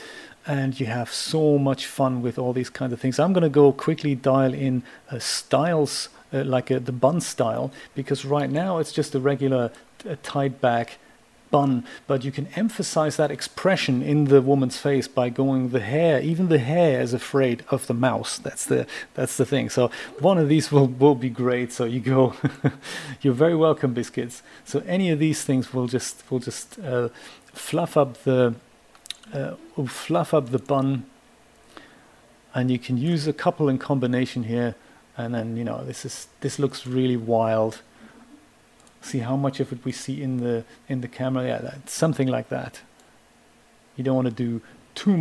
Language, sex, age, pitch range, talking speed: English, male, 40-59, 125-150 Hz, 185 wpm